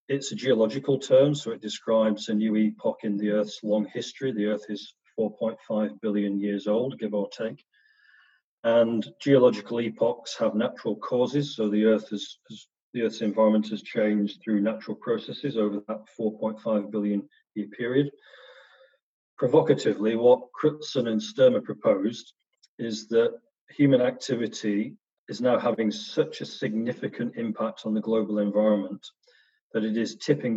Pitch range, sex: 105-115 Hz, male